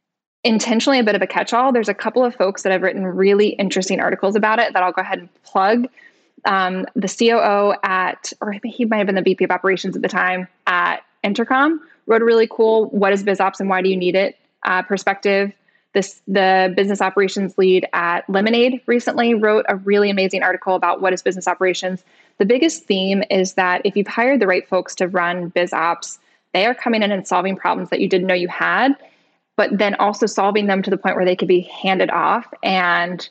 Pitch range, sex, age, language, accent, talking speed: 185-215 Hz, female, 10-29, English, American, 215 wpm